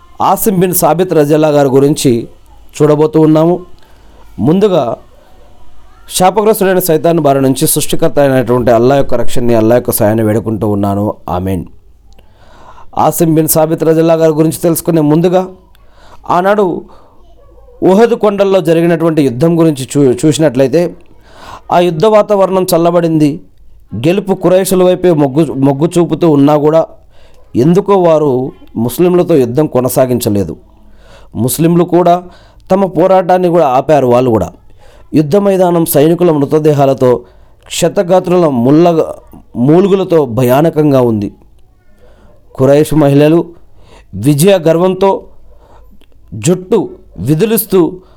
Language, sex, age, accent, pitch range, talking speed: Telugu, male, 40-59, native, 125-175 Hz, 95 wpm